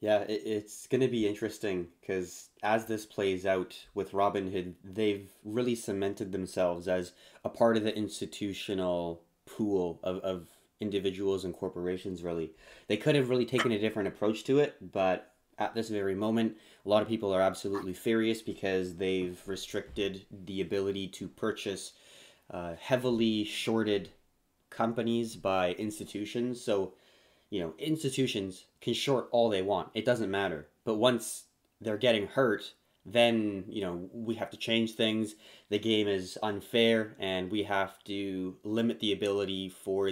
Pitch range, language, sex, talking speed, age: 95-110 Hz, English, male, 155 wpm, 20-39